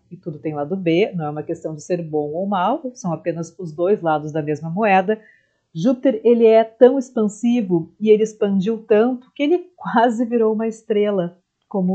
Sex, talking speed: female, 190 wpm